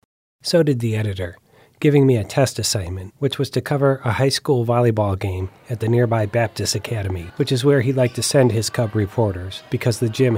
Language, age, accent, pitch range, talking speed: English, 30-49, American, 100-130 Hz, 210 wpm